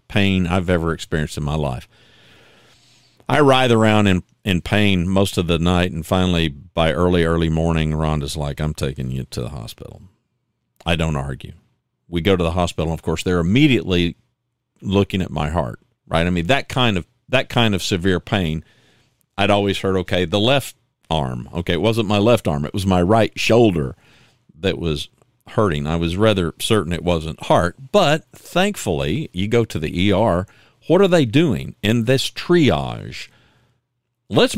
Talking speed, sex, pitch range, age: 175 wpm, male, 85-120 Hz, 50-69